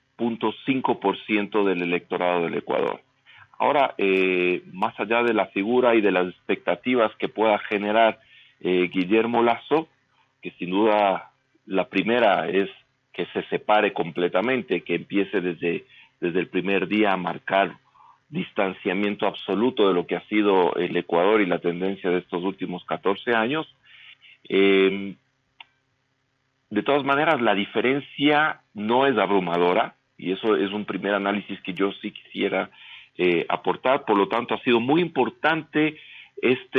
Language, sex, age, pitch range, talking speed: Spanish, male, 40-59, 95-125 Hz, 145 wpm